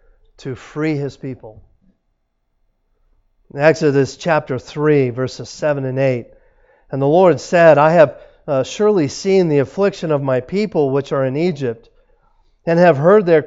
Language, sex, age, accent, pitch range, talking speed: English, male, 50-69, American, 135-175 Hz, 145 wpm